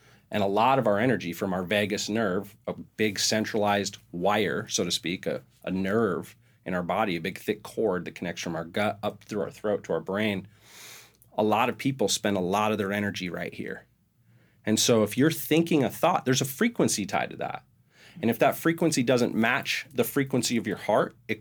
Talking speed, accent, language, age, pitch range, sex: 215 wpm, American, English, 30-49, 105-135 Hz, male